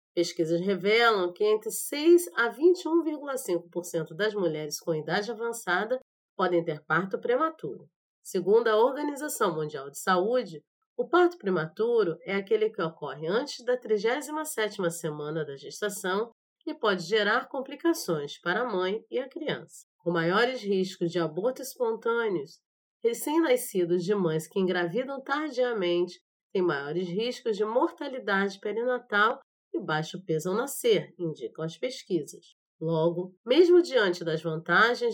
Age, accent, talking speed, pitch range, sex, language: 30-49, Brazilian, 130 wpm, 175-270 Hz, female, Portuguese